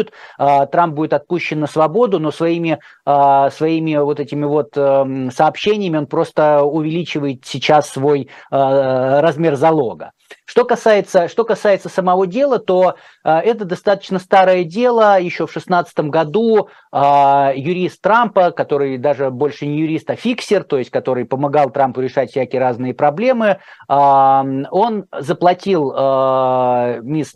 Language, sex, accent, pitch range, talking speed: Russian, male, native, 145-190 Hz, 120 wpm